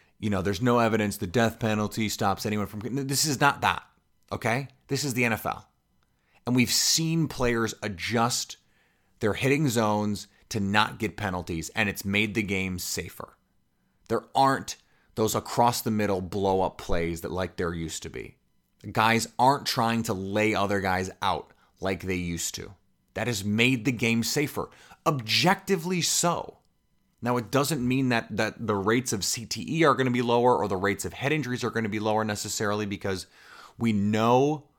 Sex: male